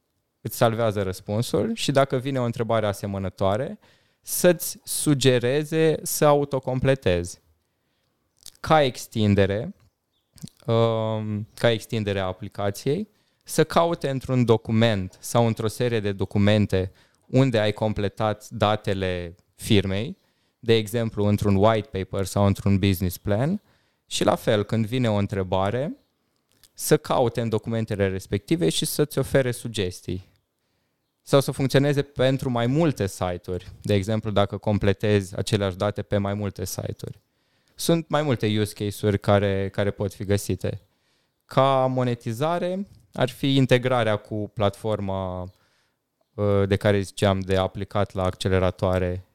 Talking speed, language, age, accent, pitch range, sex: 120 wpm, Romanian, 20-39, native, 100-130 Hz, male